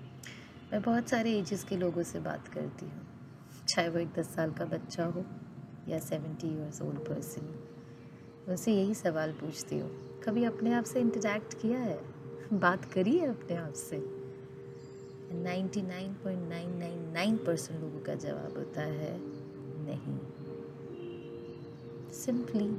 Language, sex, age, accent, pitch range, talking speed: Hindi, female, 30-49, native, 155-210 Hz, 145 wpm